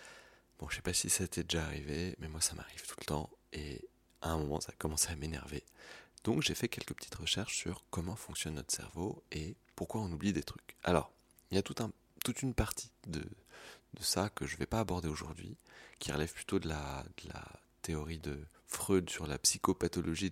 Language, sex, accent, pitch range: French, male, French, 80-95 Hz